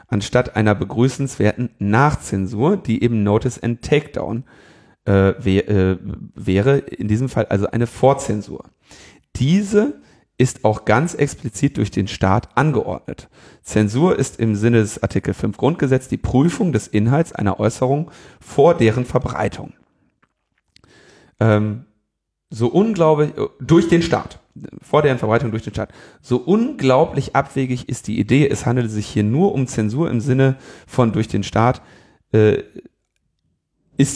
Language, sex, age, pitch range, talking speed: German, male, 40-59, 105-135 Hz, 140 wpm